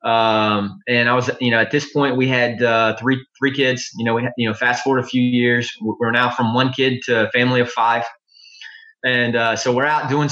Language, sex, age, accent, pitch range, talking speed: English, male, 20-39, American, 115-135 Hz, 240 wpm